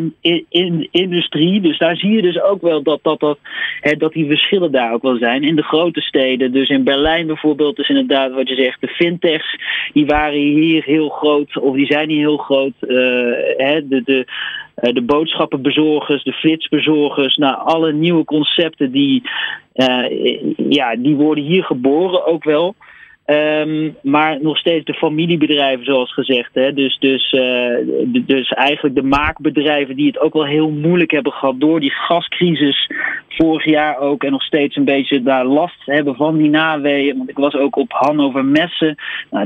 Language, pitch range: Dutch, 140-160 Hz